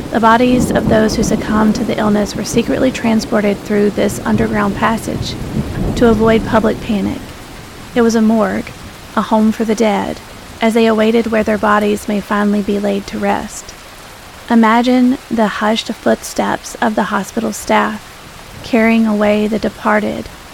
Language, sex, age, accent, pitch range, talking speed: English, female, 30-49, American, 210-230 Hz, 155 wpm